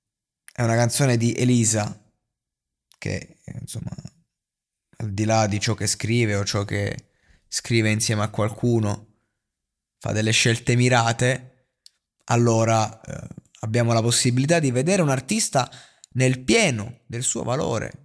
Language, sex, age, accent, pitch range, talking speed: Italian, male, 20-39, native, 115-140 Hz, 130 wpm